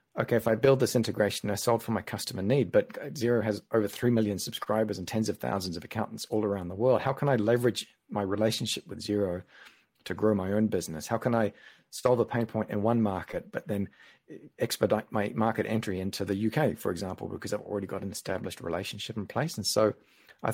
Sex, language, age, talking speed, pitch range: male, English, 40-59, 220 wpm, 100-115 Hz